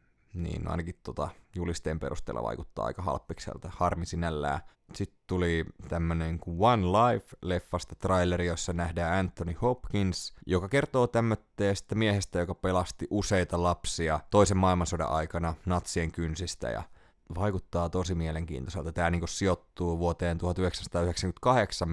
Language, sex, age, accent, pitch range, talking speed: Finnish, male, 20-39, native, 85-95 Hz, 115 wpm